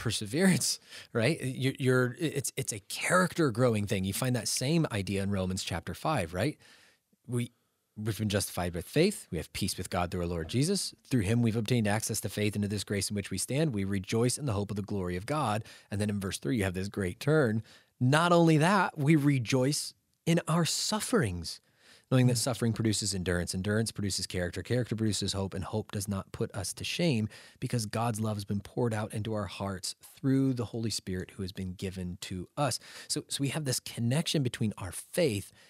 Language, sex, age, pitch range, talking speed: English, male, 20-39, 100-130 Hz, 210 wpm